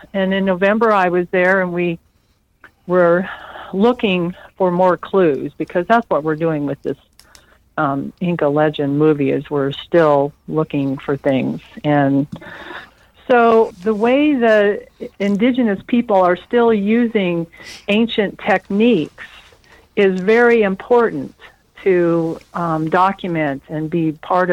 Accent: American